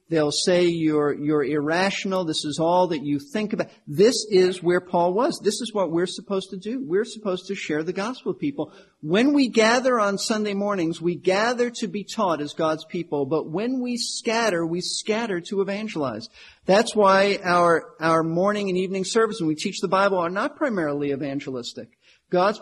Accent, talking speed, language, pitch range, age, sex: American, 190 wpm, English, 165-220 Hz, 50-69, male